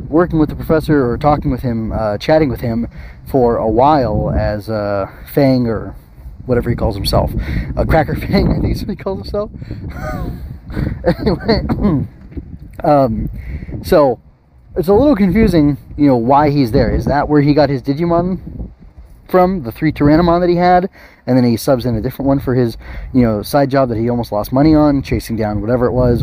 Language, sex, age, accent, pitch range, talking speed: English, male, 30-49, American, 120-155 Hz, 190 wpm